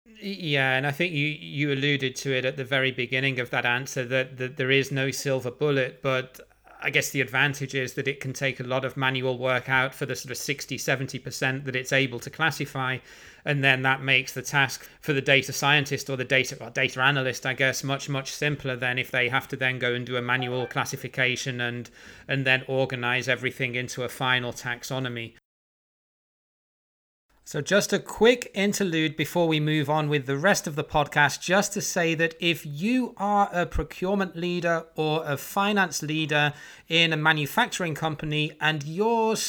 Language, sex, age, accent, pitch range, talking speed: English, male, 30-49, British, 135-165 Hz, 190 wpm